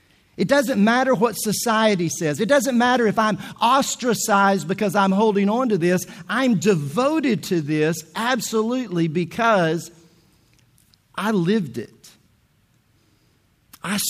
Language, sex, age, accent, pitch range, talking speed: English, male, 50-69, American, 170-220 Hz, 120 wpm